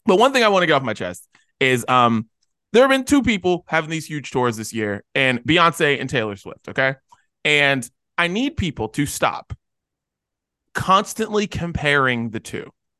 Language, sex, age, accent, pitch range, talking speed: English, male, 20-39, American, 140-230 Hz, 180 wpm